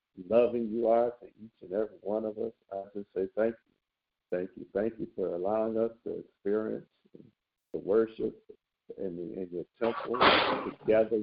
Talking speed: 170 wpm